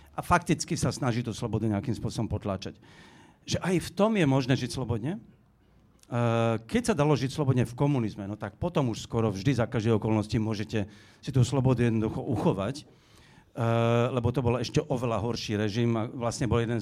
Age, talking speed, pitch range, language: 50-69, 180 wpm, 115-145 Hz, Slovak